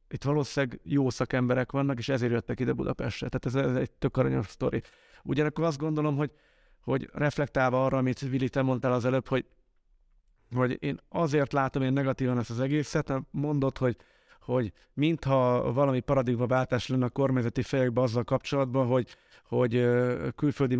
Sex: male